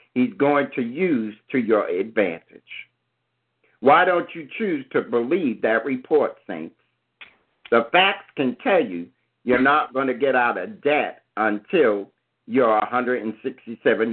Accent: American